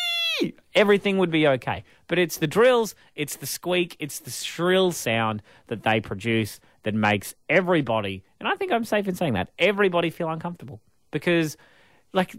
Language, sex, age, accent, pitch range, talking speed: English, male, 30-49, Australian, 115-175 Hz, 165 wpm